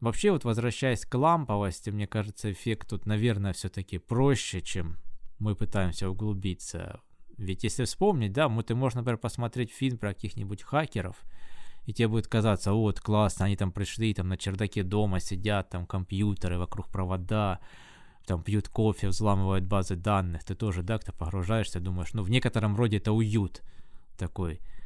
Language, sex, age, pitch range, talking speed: Russian, male, 20-39, 95-115 Hz, 165 wpm